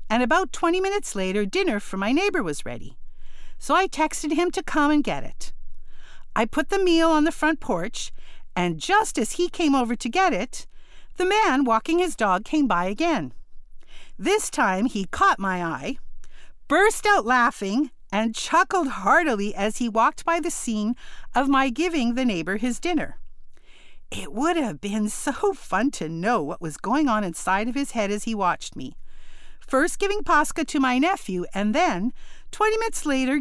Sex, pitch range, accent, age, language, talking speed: female, 220-335 Hz, American, 50-69, English, 180 wpm